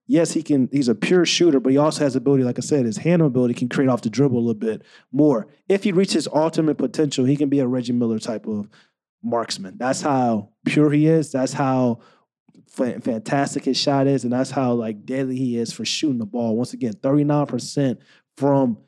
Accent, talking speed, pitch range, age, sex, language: American, 215 wpm, 130-155 Hz, 20-39, male, English